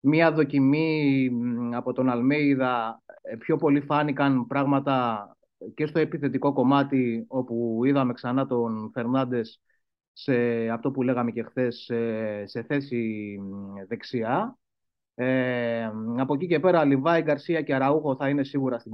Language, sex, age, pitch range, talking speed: Greek, male, 30-49, 120-155 Hz, 130 wpm